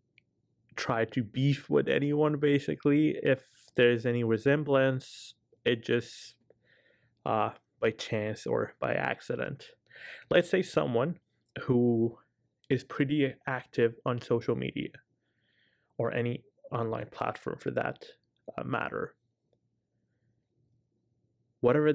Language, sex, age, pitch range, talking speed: English, male, 20-39, 115-145 Hz, 100 wpm